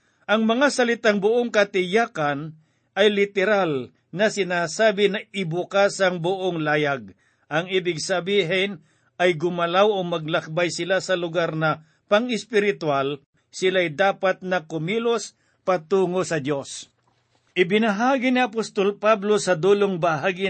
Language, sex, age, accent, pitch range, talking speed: Filipino, male, 50-69, native, 155-200 Hz, 120 wpm